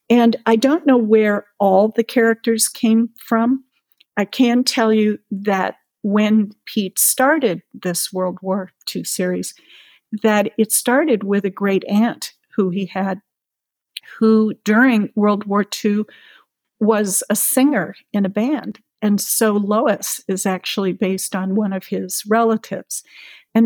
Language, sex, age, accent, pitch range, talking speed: English, female, 50-69, American, 195-230 Hz, 140 wpm